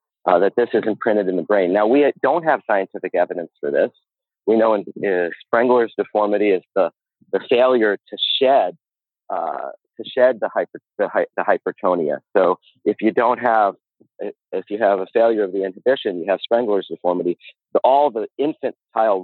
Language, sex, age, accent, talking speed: English, male, 40-59, American, 175 wpm